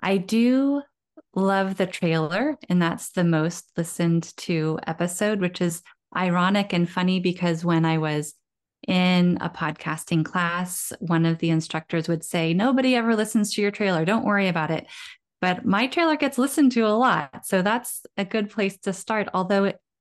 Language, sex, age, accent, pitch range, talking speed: English, female, 20-39, American, 165-200 Hz, 170 wpm